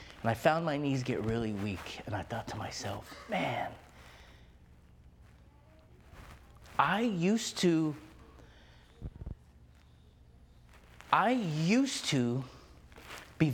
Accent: American